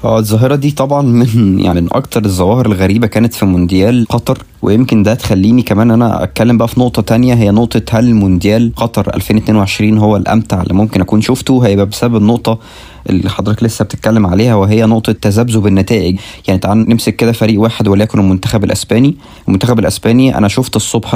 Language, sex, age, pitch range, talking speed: Arabic, male, 20-39, 100-120 Hz, 175 wpm